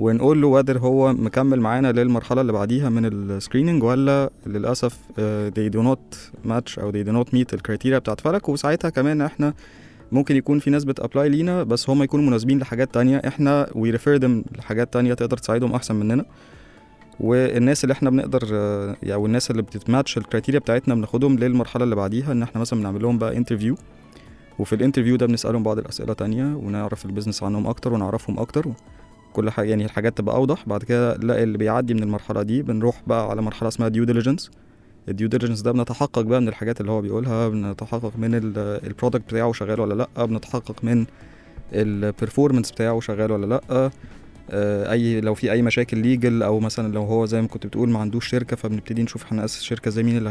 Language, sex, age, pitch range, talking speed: Arabic, male, 20-39, 110-125 Hz, 180 wpm